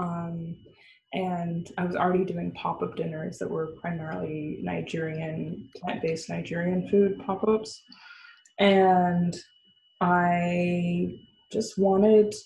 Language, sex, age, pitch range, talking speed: English, female, 20-39, 170-200 Hz, 95 wpm